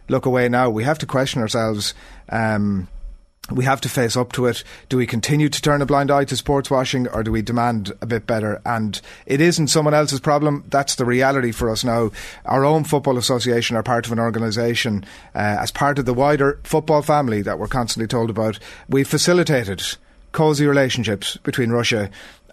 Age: 30-49